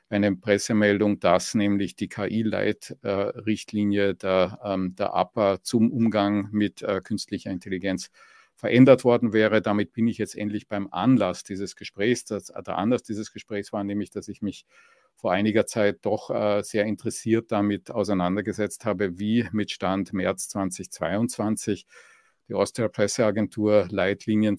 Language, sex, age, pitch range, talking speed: English, male, 50-69, 100-110 Hz, 130 wpm